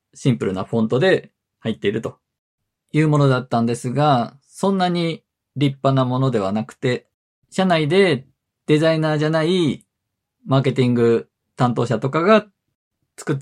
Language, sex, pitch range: Japanese, male, 125-160 Hz